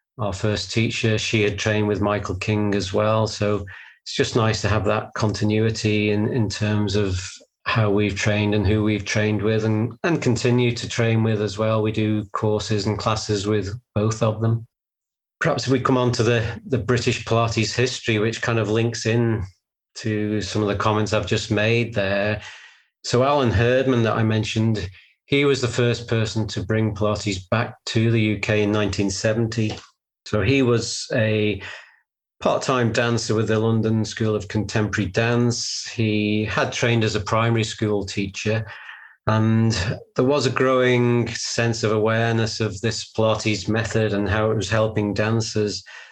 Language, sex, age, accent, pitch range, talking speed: English, male, 40-59, British, 105-115 Hz, 170 wpm